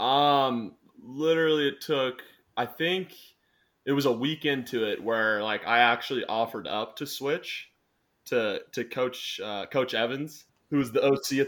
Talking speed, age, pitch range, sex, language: 160 wpm, 20-39, 115-135 Hz, male, English